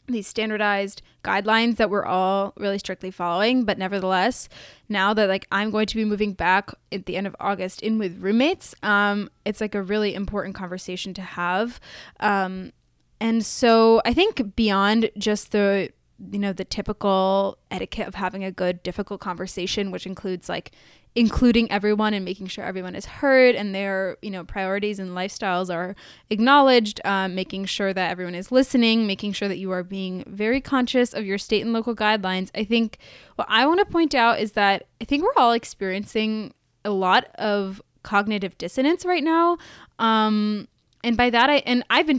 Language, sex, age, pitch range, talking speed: English, female, 10-29, 190-230 Hz, 180 wpm